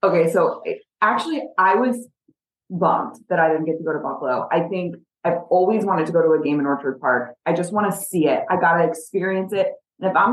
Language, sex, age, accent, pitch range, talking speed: English, female, 20-39, American, 155-190 Hz, 240 wpm